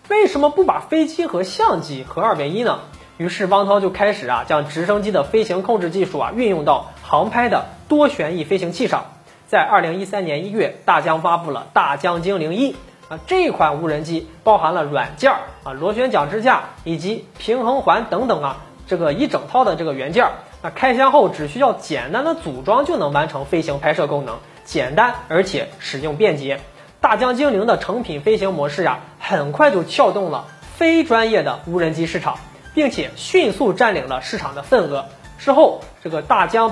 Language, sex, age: Chinese, male, 20-39